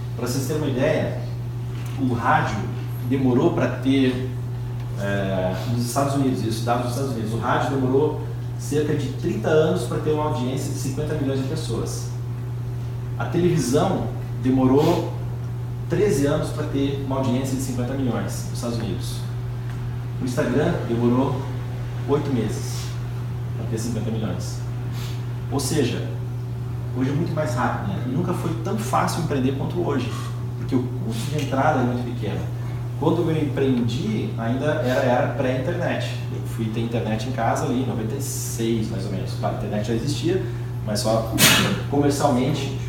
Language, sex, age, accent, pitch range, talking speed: Portuguese, male, 30-49, Brazilian, 120-130 Hz, 150 wpm